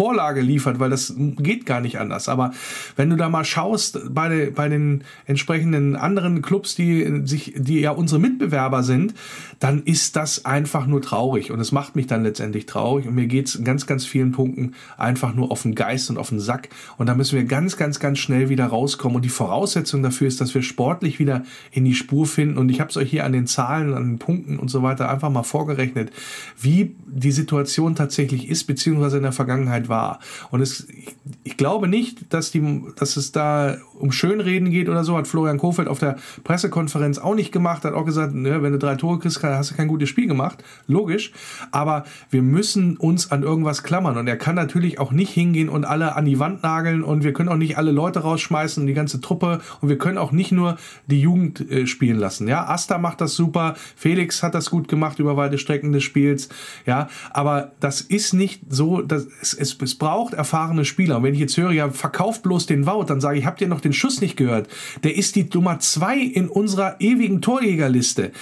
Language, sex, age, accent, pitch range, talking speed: German, male, 40-59, German, 135-170 Hz, 215 wpm